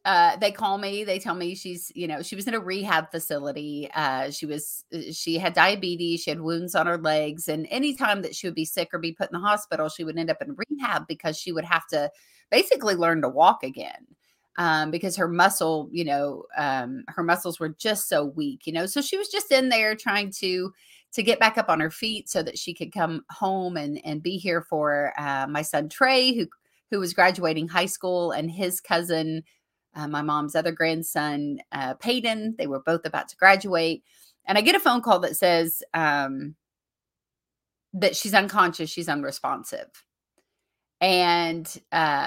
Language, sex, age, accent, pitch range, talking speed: English, female, 30-49, American, 155-200 Hz, 195 wpm